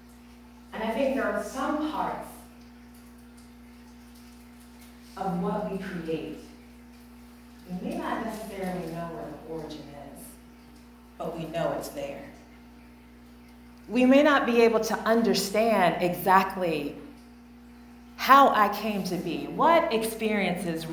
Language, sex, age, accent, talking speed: English, female, 40-59, American, 105 wpm